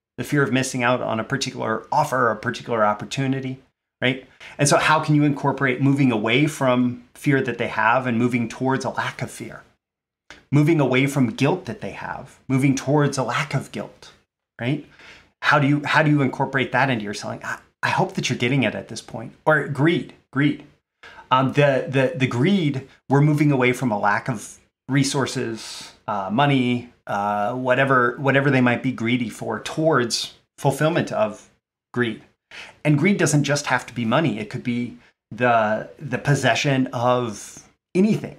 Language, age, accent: English, 30-49, American